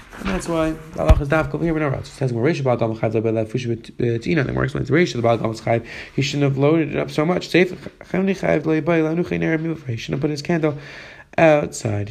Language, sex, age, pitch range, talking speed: English, male, 20-39, 115-150 Hz, 95 wpm